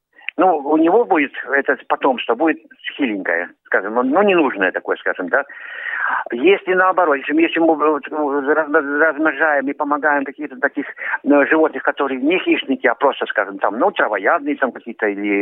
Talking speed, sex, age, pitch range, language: 150 wpm, male, 50-69, 140-190 Hz, Russian